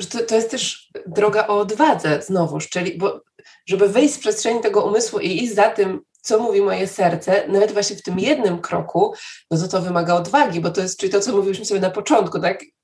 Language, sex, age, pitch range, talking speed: Polish, female, 20-39, 185-235 Hz, 215 wpm